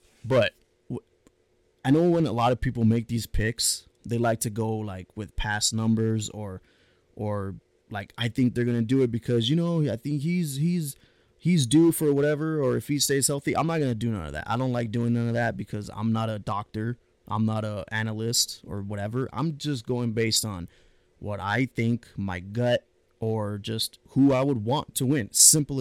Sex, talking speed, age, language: male, 210 wpm, 20-39, English